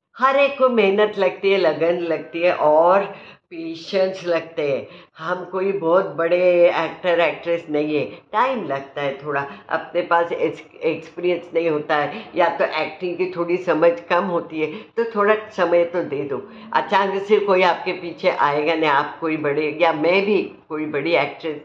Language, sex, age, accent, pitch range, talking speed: Hindi, female, 50-69, native, 160-195 Hz, 170 wpm